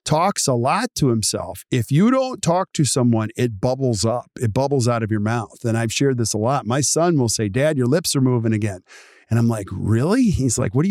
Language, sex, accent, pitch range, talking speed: English, male, American, 120-160 Hz, 240 wpm